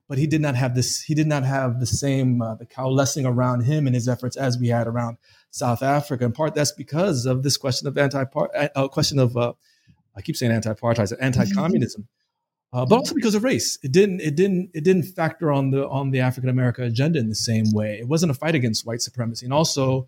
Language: English